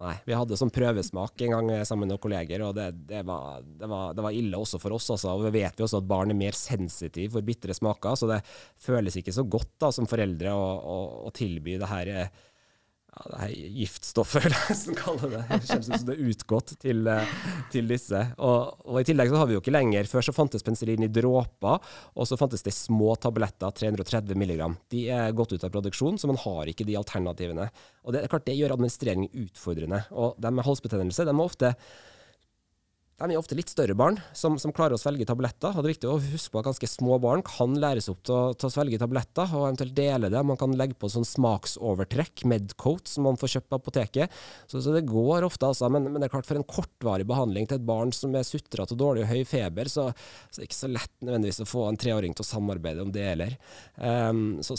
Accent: Norwegian